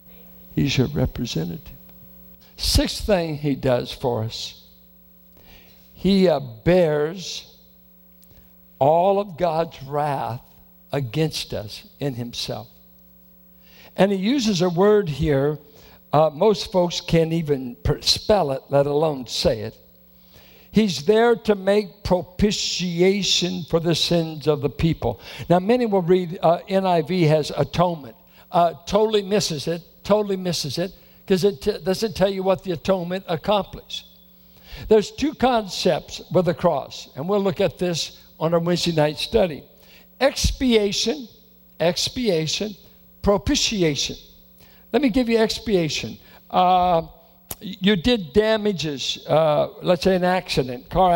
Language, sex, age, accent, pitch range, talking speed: English, male, 60-79, American, 130-195 Hz, 125 wpm